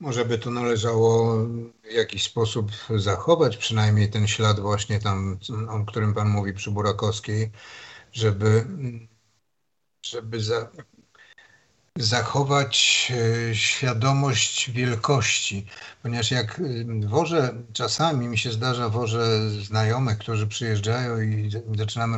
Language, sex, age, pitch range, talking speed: Polish, male, 50-69, 110-135 Hz, 105 wpm